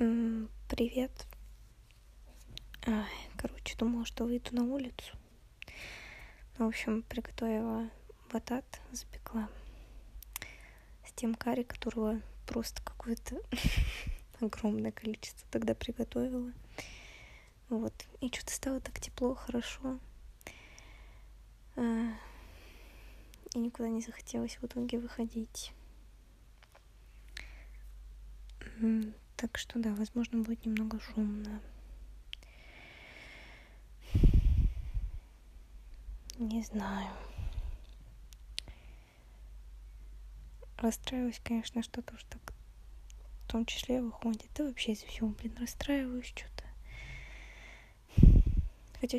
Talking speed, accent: 80 wpm, native